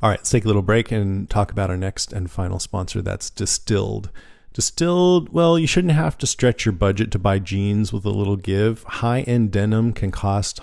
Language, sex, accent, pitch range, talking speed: English, male, American, 90-110 Hz, 210 wpm